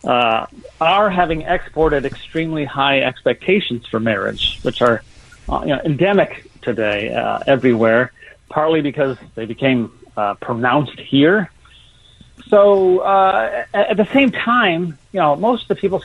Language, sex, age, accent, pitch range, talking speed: English, male, 40-59, American, 120-180 Hz, 140 wpm